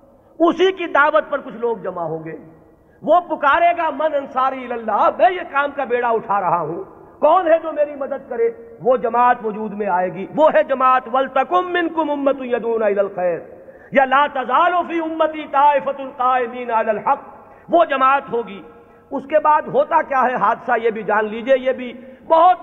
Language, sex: Urdu, male